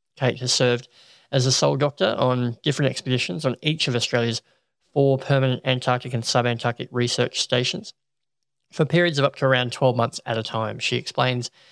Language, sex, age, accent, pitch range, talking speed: English, male, 20-39, Australian, 120-140 Hz, 175 wpm